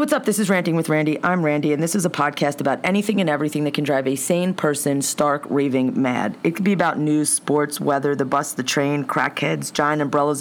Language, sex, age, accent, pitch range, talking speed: English, female, 30-49, American, 170-225 Hz, 235 wpm